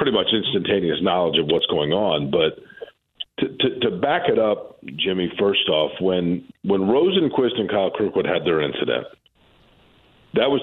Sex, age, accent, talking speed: male, 50-69, American, 165 wpm